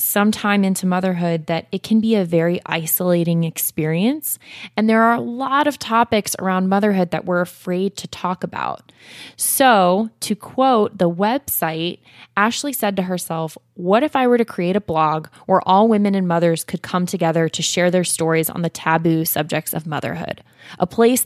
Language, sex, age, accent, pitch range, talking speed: English, female, 20-39, American, 170-215 Hz, 180 wpm